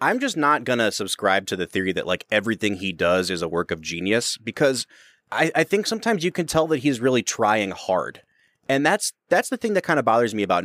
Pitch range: 100-140 Hz